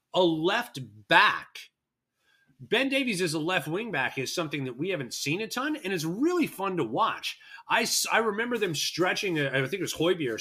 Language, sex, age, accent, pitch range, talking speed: English, male, 30-49, American, 140-180 Hz, 195 wpm